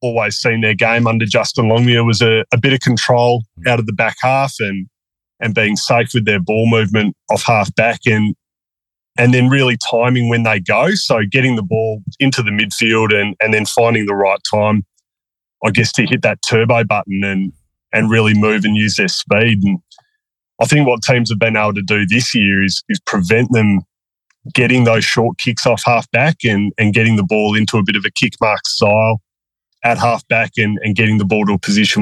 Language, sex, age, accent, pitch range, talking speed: English, male, 20-39, Australian, 105-120 Hz, 210 wpm